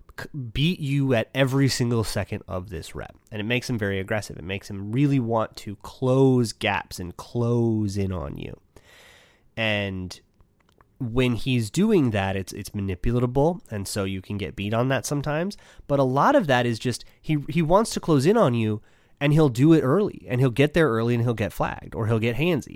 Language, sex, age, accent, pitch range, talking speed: English, male, 30-49, American, 100-130 Hz, 205 wpm